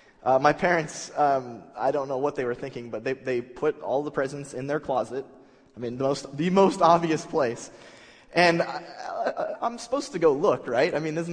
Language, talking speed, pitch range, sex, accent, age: English, 215 wpm, 135-170 Hz, male, American, 20-39